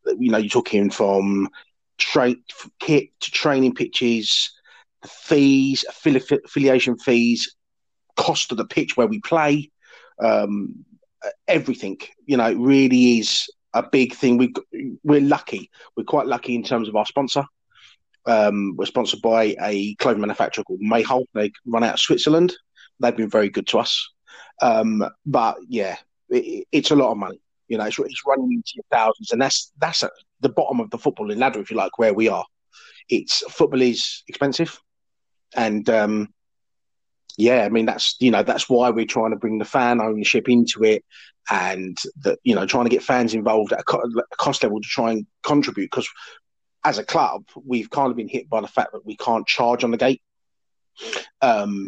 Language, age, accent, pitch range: English, 30-49, British, 110-145 Hz